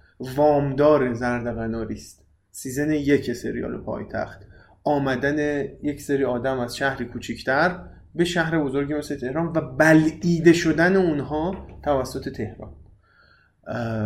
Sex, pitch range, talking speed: male, 115-160 Hz, 105 wpm